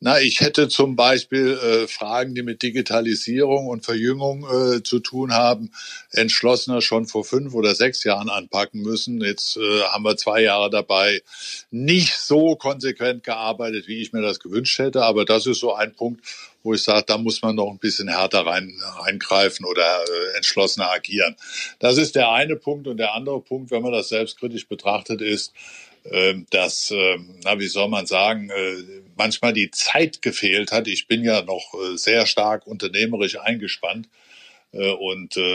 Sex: male